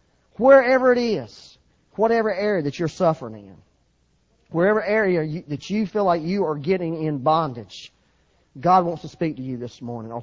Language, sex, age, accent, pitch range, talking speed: English, male, 40-59, American, 125-175 Hz, 170 wpm